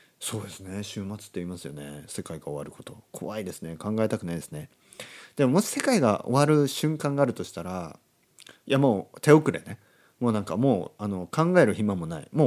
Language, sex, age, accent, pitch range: Japanese, male, 40-59, native, 85-120 Hz